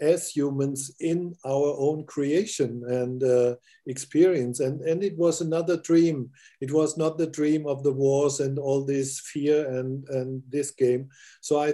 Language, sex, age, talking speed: English, male, 50-69, 170 wpm